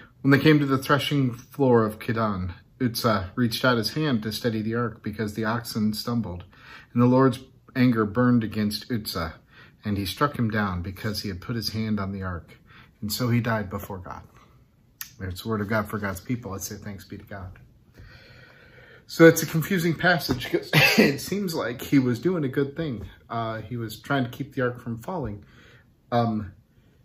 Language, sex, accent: English, male, American